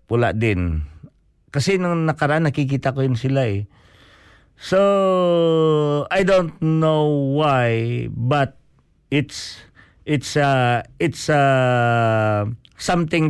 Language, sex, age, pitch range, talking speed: Filipino, male, 50-69, 115-155 Hz, 100 wpm